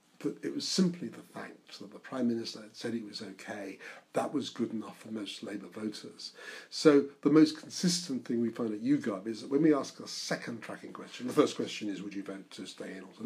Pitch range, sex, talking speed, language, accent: 110-180 Hz, male, 240 wpm, English, British